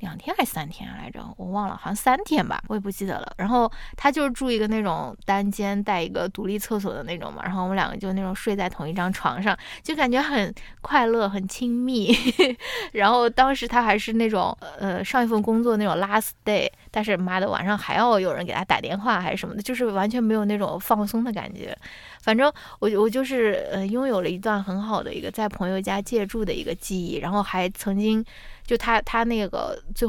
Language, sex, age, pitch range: Chinese, female, 20-39, 195-225 Hz